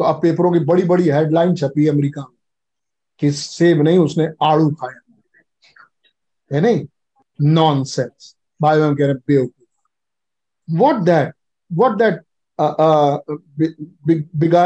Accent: native